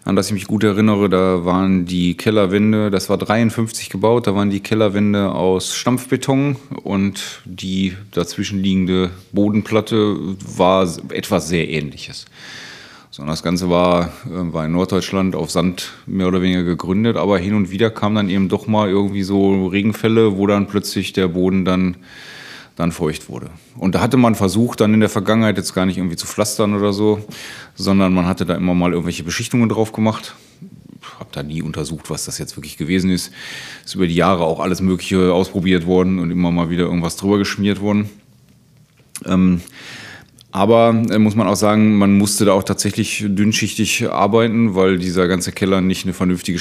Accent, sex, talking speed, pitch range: German, male, 175 wpm, 90-105 Hz